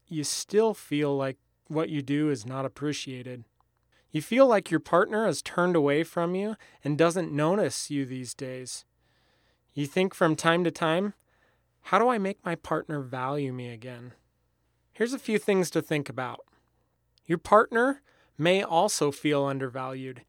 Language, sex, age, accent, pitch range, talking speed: English, male, 30-49, American, 140-175 Hz, 160 wpm